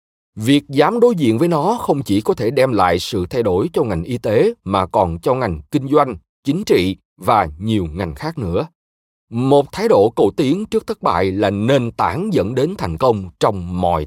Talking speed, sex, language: 210 wpm, male, Vietnamese